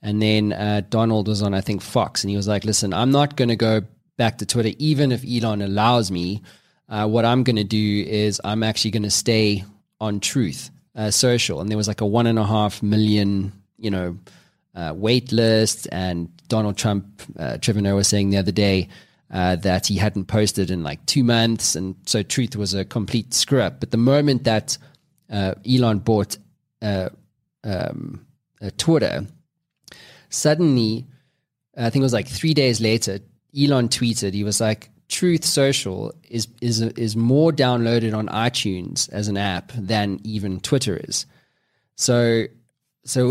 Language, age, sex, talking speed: English, 20-39, male, 170 wpm